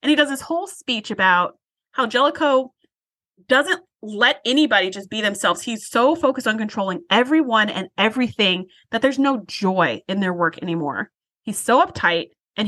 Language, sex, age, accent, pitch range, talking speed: English, female, 30-49, American, 210-290 Hz, 165 wpm